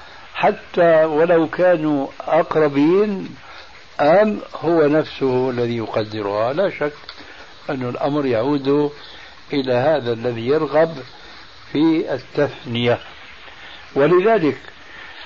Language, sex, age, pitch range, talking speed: Arabic, male, 60-79, 130-165 Hz, 85 wpm